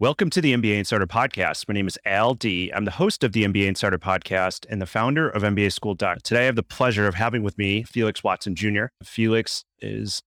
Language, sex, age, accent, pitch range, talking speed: English, male, 30-49, American, 100-120 Hz, 230 wpm